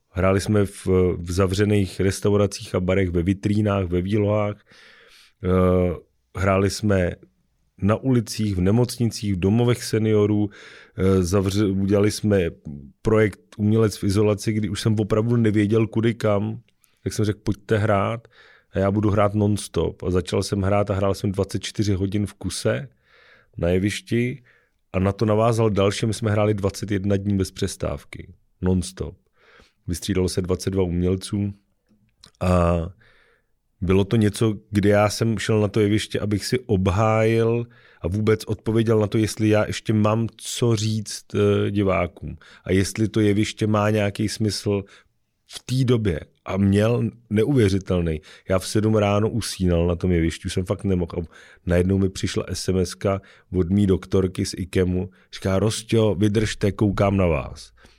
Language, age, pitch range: Czech, 40-59, 95-110 Hz